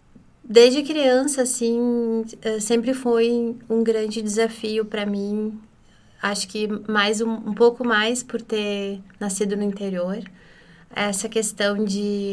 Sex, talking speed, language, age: female, 120 wpm, Portuguese, 20-39